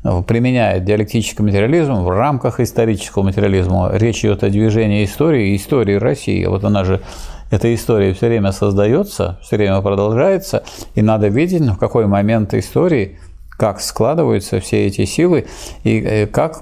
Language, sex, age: Russian, male, 50-69